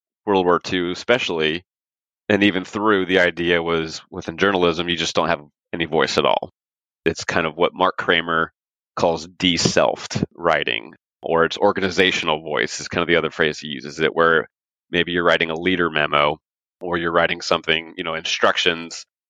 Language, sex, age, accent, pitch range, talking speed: English, male, 30-49, American, 85-95 Hz, 175 wpm